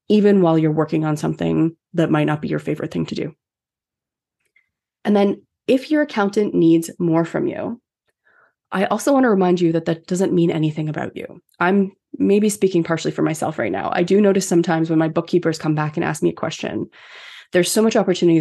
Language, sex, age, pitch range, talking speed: English, female, 20-39, 160-205 Hz, 205 wpm